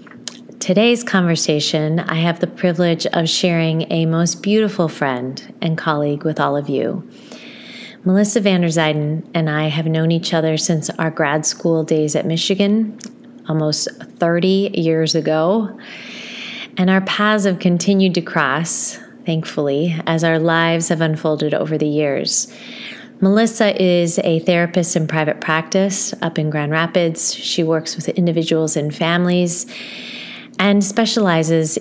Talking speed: 140 wpm